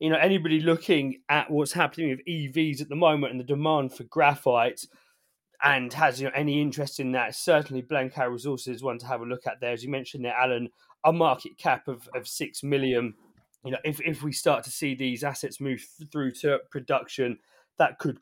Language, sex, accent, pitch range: English, male, British, 130-165 Hz